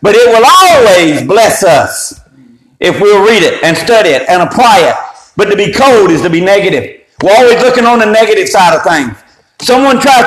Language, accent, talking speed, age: English, American, 205 wpm, 50-69